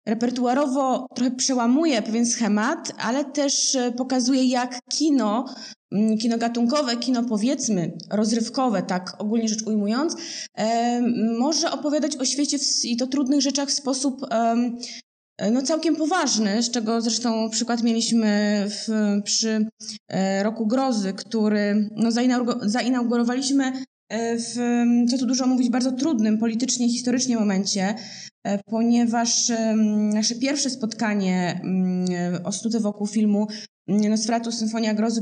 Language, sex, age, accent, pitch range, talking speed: Polish, female, 20-39, native, 210-250 Hz, 105 wpm